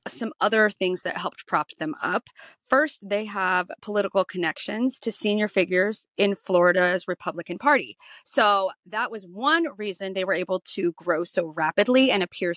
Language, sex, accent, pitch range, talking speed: English, female, American, 175-215 Hz, 160 wpm